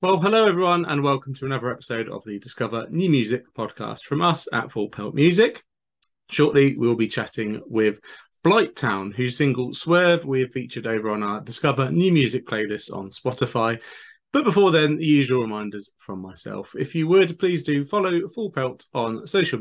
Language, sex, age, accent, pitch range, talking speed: English, male, 30-49, British, 110-150 Hz, 180 wpm